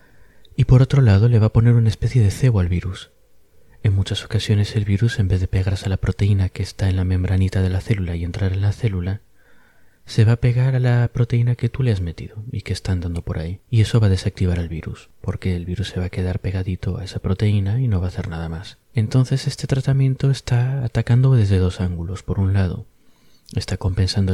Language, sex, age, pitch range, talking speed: English, male, 30-49, 95-110 Hz, 235 wpm